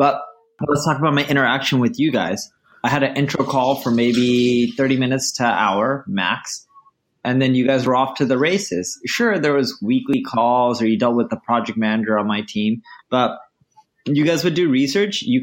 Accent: American